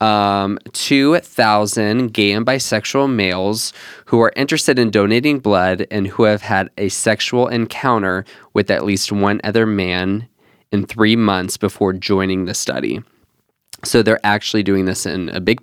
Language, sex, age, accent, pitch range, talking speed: English, male, 20-39, American, 100-115 Hz, 155 wpm